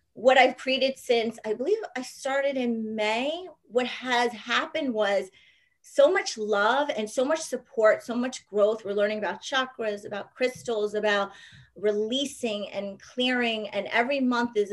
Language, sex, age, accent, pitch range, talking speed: English, female, 30-49, American, 210-260 Hz, 155 wpm